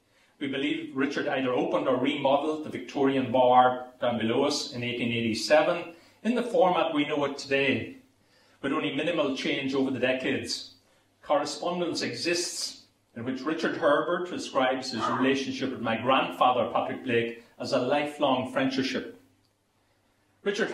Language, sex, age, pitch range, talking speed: English, male, 40-59, 120-150 Hz, 140 wpm